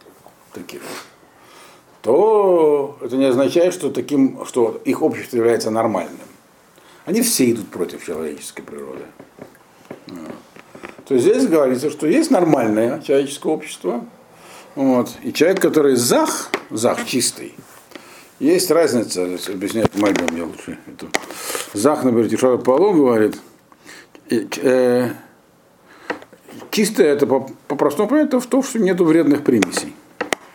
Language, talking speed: Russian, 120 wpm